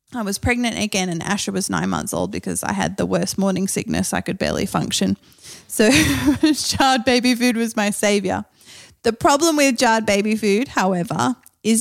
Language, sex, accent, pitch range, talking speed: English, female, Australian, 190-230 Hz, 185 wpm